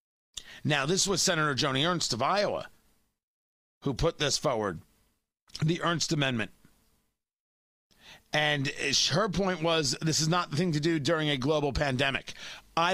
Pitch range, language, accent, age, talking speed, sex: 135-185 Hz, English, American, 40-59, 145 wpm, male